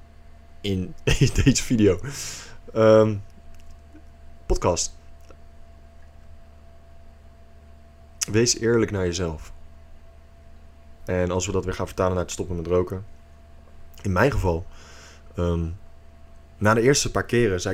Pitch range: 75-105 Hz